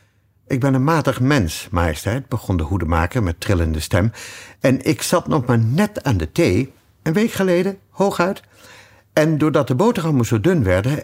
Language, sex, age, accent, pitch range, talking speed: Dutch, male, 50-69, Dutch, 100-150 Hz, 175 wpm